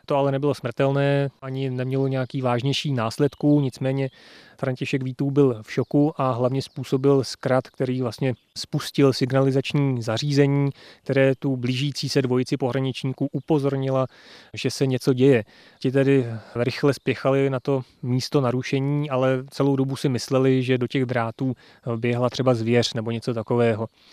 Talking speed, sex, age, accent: 145 wpm, male, 30-49, native